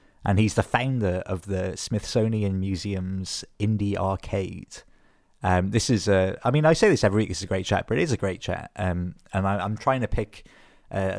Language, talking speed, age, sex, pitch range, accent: English, 215 wpm, 20-39, male, 90-105 Hz, British